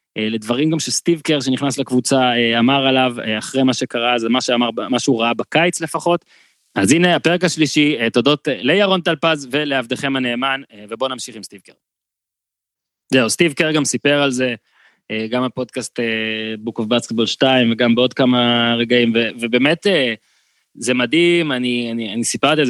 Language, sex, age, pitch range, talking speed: Hebrew, male, 20-39, 120-145 Hz, 155 wpm